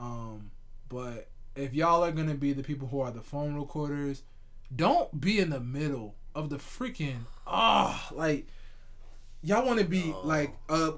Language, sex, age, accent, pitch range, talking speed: English, male, 20-39, American, 120-150 Hz, 175 wpm